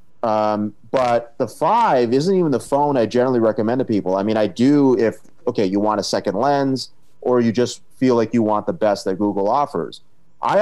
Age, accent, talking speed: 30-49, American, 210 wpm